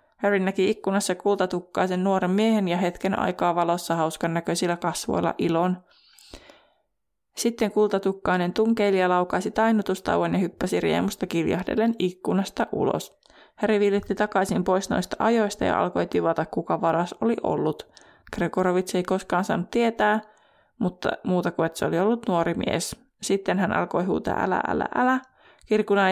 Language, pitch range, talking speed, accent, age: Finnish, 180-220 Hz, 140 wpm, native, 20-39